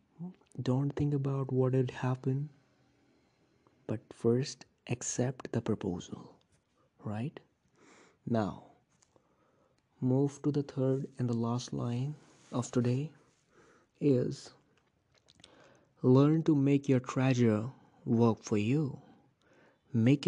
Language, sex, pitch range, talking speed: English, male, 115-135 Hz, 100 wpm